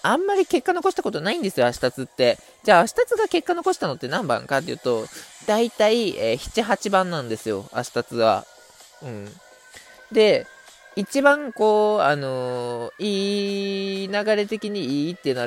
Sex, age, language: male, 20-39, Japanese